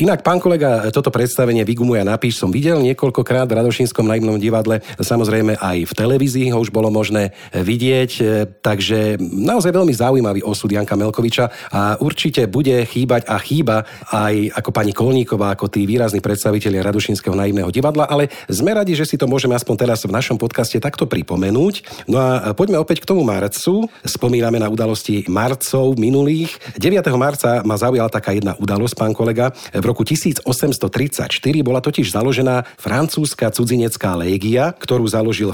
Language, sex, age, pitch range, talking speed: Slovak, male, 40-59, 110-140 Hz, 155 wpm